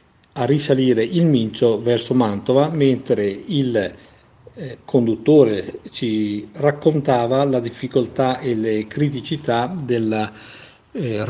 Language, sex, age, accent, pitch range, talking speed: Italian, male, 50-69, native, 105-130 Hz, 100 wpm